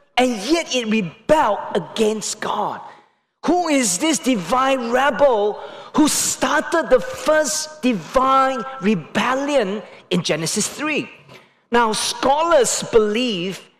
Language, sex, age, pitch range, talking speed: English, male, 40-59, 215-285 Hz, 100 wpm